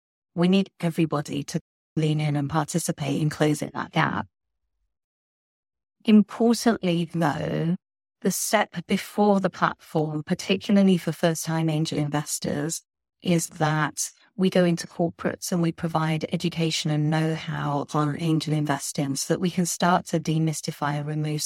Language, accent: English, British